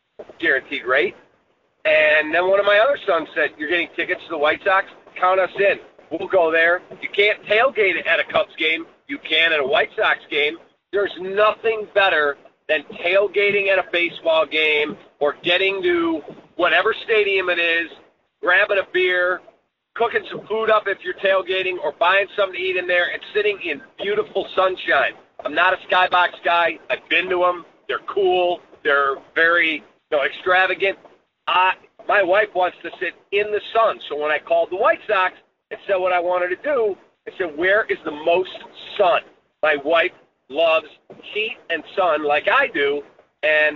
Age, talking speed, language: 40-59, 180 wpm, English